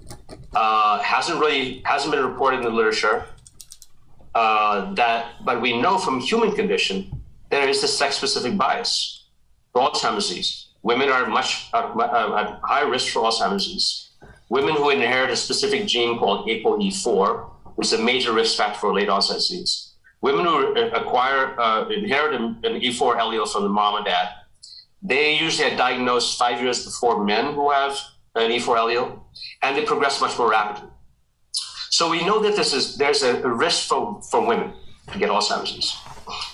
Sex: male